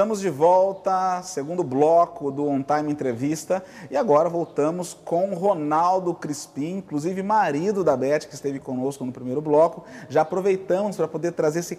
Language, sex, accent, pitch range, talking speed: Portuguese, male, Brazilian, 150-185 Hz, 160 wpm